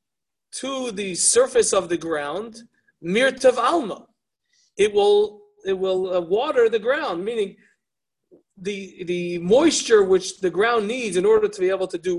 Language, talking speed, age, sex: English, 155 wpm, 40-59, male